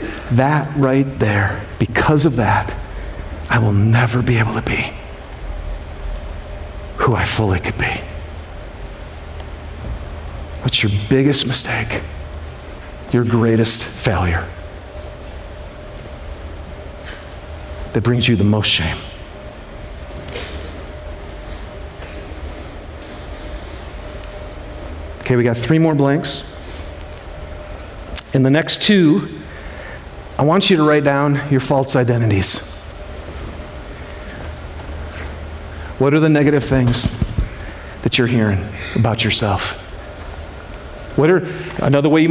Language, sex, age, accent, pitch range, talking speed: English, male, 50-69, American, 75-120 Hz, 90 wpm